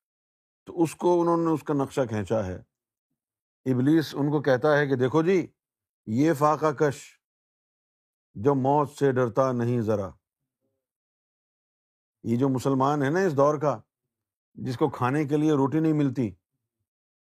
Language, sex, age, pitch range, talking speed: Urdu, male, 50-69, 115-145 Hz, 145 wpm